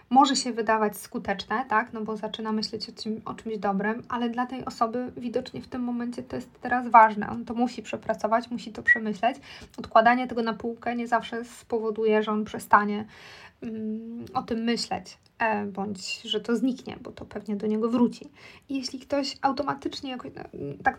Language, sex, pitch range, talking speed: Polish, female, 220-255 Hz, 175 wpm